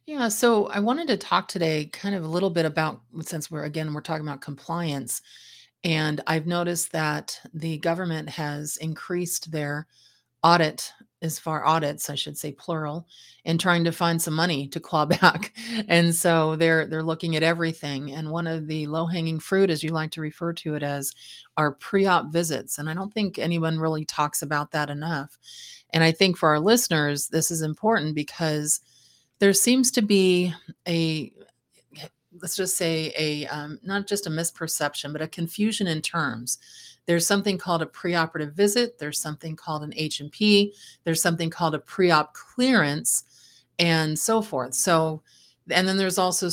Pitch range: 150-180 Hz